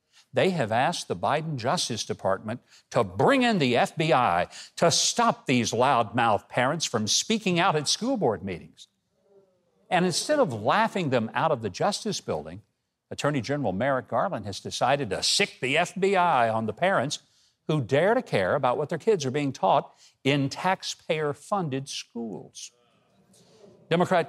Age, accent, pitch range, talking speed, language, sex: 60-79, American, 130-195 Hz, 155 wpm, English, male